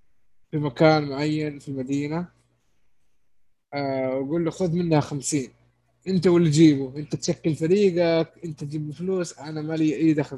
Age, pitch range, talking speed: 20-39, 140-175 Hz, 135 wpm